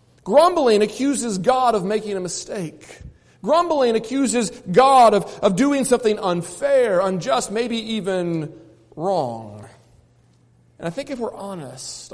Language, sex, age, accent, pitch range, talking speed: English, male, 40-59, American, 185-270 Hz, 125 wpm